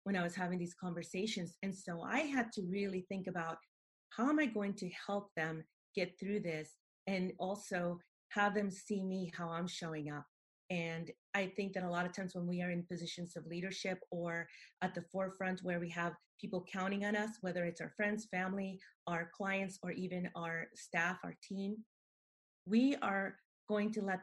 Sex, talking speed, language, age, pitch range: female, 195 wpm, English, 30-49, 175-210 Hz